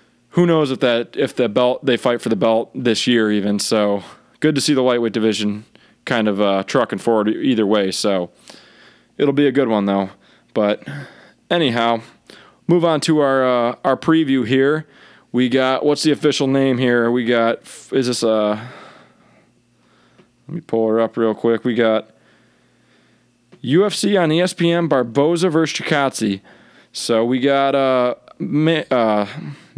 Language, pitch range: English, 115-150 Hz